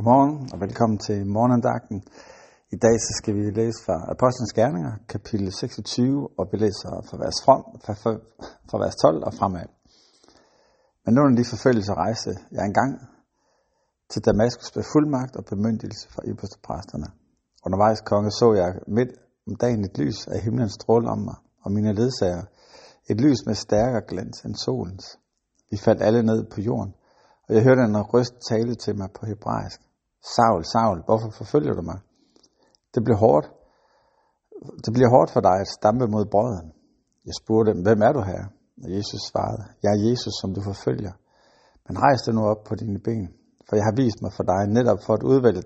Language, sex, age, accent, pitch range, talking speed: Danish, male, 60-79, native, 105-120 Hz, 175 wpm